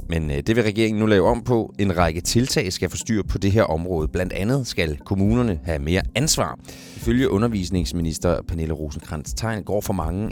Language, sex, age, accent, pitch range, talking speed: Danish, male, 30-49, native, 80-105 Hz, 185 wpm